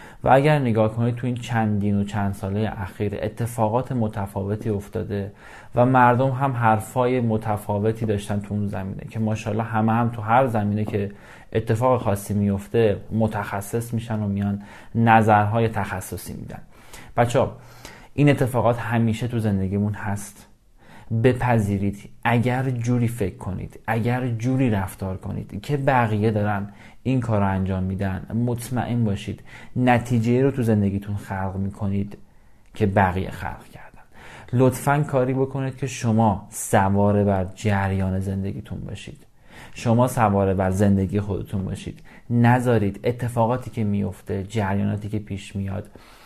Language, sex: Persian, male